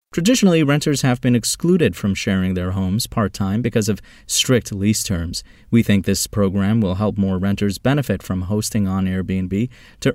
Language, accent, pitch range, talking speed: English, American, 95-125 Hz, 170 wpm